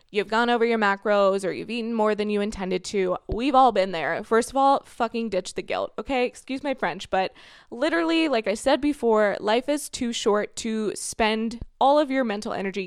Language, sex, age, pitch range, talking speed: English, female, 20-39, 190-260 Hz, 210 wpm